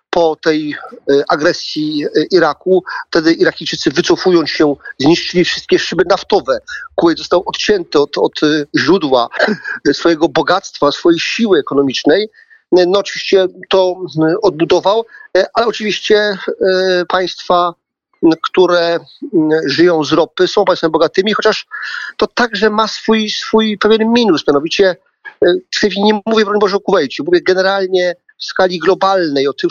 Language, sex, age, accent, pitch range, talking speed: Polish, male, 40-59, native, 175-215 Hz, 120 wpm